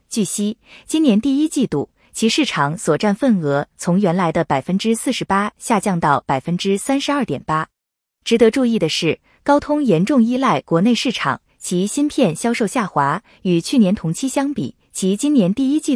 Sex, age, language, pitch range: female, 20-39, Chinese, 160-260 Hz